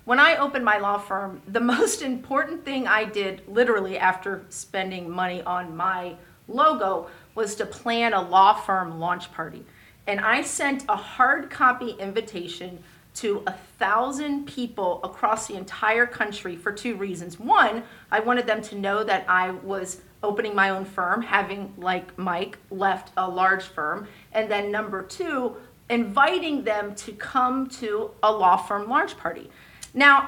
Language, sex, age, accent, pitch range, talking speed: English, female, 40-59, American, 200-280 Hz, 160 wpm